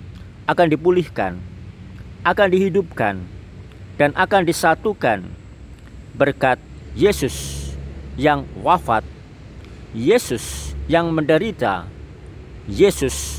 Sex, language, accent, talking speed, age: male, Indonesian, native, 65 wpm, 40-59